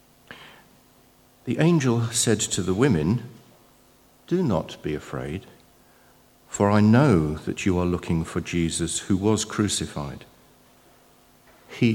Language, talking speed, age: English, 115 wpm, 60-79